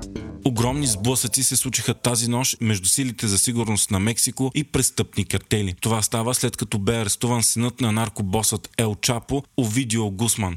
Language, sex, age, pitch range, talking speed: Bulgarian, male, 20-39, 105-125 Hz, 160 wpm